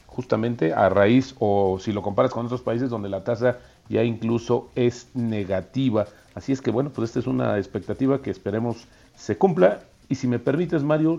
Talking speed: 190 wpm